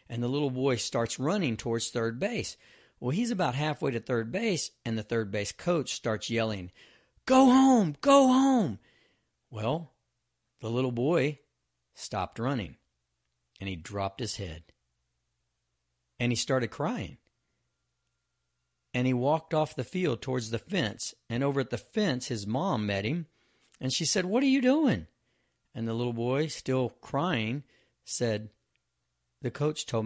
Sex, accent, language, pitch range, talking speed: male, American, English, 105-150 Hz, 155 wpm